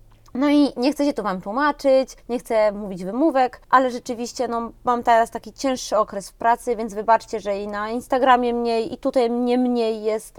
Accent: native